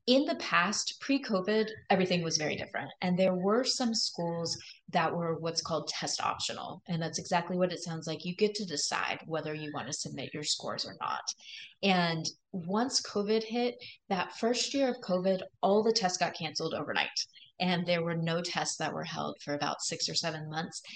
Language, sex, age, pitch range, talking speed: English, female, 20-39, 160-205 Hz, 195 wpm